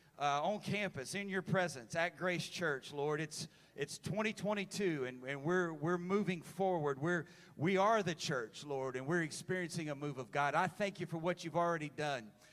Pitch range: 150-185 Hz